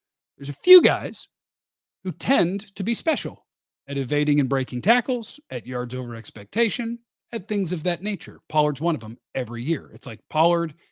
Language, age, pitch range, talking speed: English, 40-59, 140-195 Hz, 175 wpm